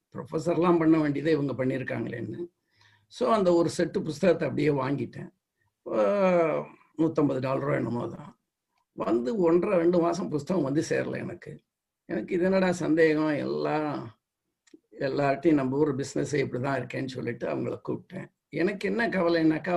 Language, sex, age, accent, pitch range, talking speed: Tamil, male, 60-79, native, 140-175 Hz, 130 wpm